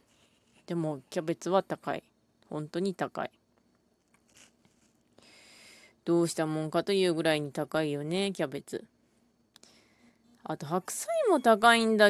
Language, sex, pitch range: Japanese, female, 155-215 Hz